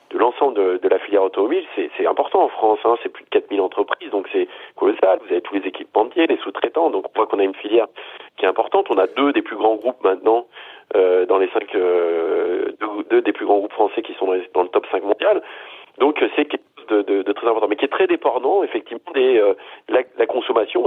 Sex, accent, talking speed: male, French, 255 wpm